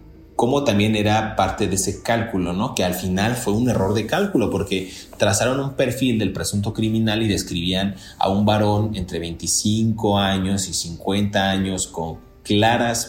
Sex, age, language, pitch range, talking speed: male, 30-49, Spanish, 95-110 Hz, 165 wpm